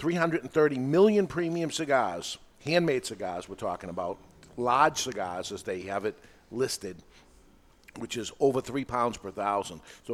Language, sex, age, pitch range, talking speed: English, male, 50-69, 105-135 Hz, 140 wpm